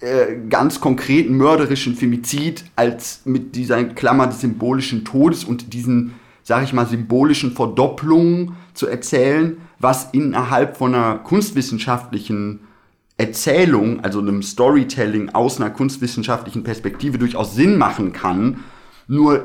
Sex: male